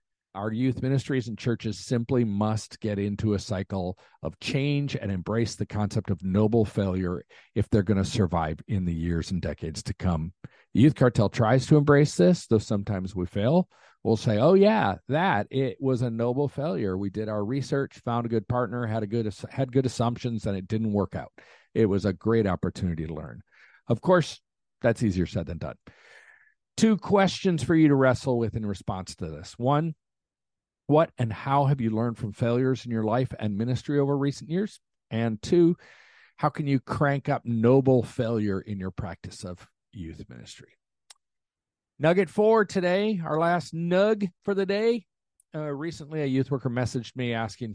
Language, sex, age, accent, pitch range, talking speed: English, male, 50-69, American, 105-140 Hz, 185 wpm